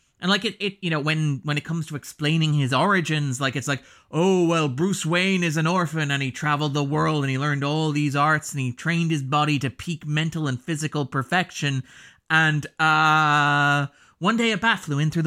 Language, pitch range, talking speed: English, 140-175 Hz, 215 wpm